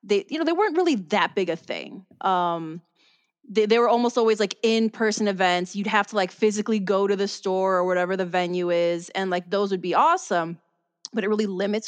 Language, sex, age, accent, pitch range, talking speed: English, female, 20-39, American, 185-220 Hz, 215 wpm